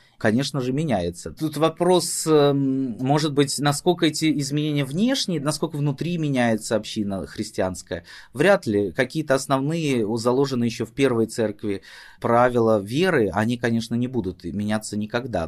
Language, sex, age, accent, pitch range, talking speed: Russian, male, 30-49, native, 105-135 Hz, 130 wpm